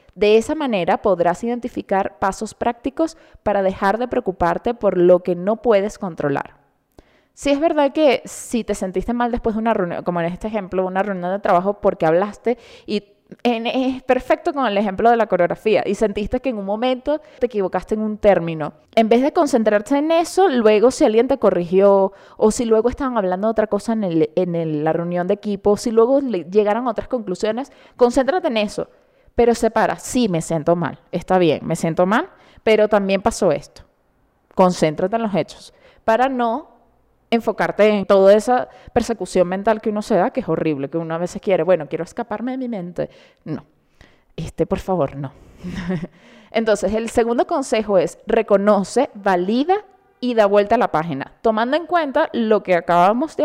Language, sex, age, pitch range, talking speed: Spanish, female, 20-39, 185-245 Hz, 185 wpm